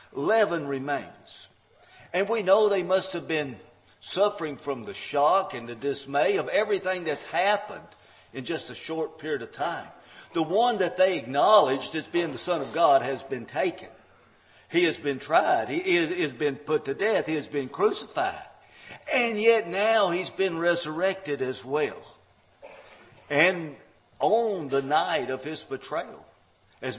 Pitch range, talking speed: 130-200 Hz, 160 wpm